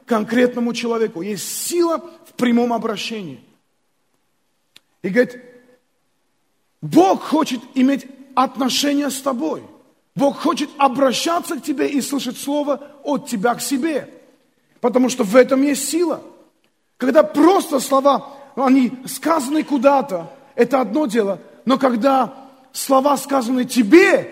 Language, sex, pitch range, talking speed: Russian, male, 195-275 Hz, 120 wpm